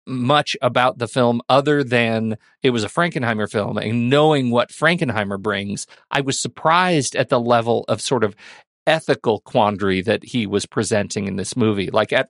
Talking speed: 175 wpm